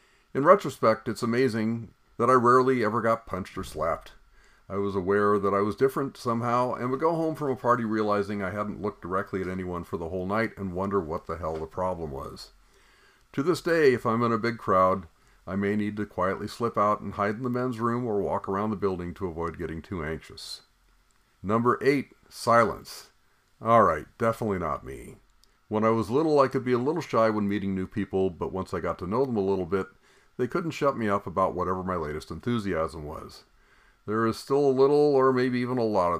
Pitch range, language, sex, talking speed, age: 95-120 Hz, English, male, 220 wpm, 50-69